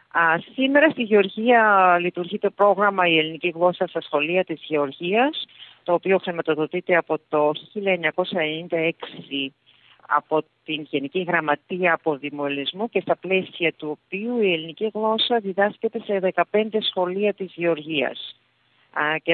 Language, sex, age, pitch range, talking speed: Greek, female, 40-59, 160-210 Hz, 120 wpm